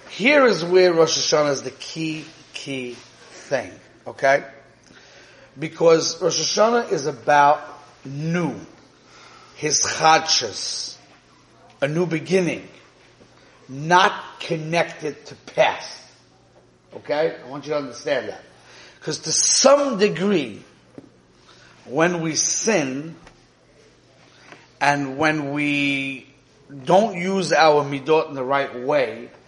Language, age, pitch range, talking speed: English, 40-59, 140-165 Hz, 105 wpm